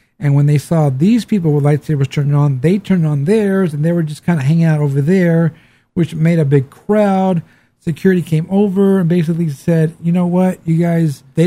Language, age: English, 40-59